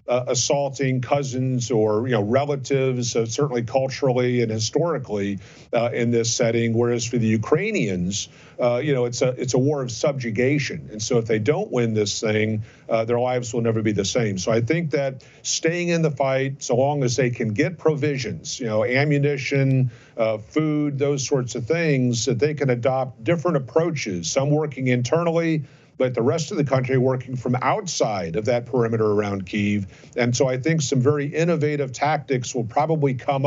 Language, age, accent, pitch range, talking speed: English, 50-69, American, 120-145 Hz, 185 wpm